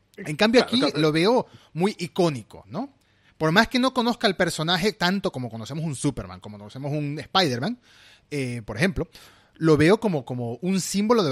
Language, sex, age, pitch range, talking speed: Spanish, male, 30-49, 120-185 Hz, 180 wpm